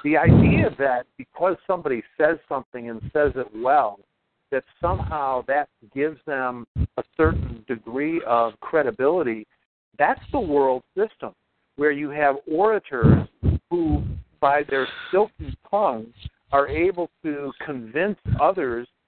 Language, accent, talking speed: English, American, 125 wpm